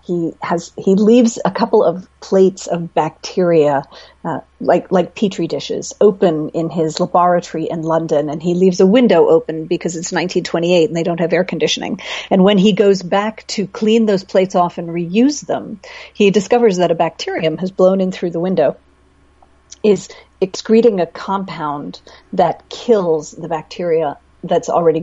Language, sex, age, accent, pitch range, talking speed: English, female, 40-59, American, 160-200 Hz, 170 wpm